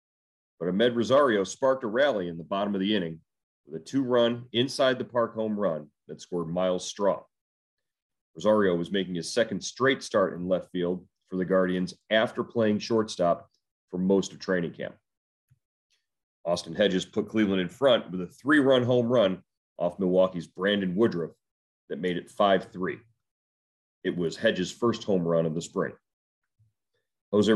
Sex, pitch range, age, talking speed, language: male, 90-110 Hz, 40-59, 160 wpm, English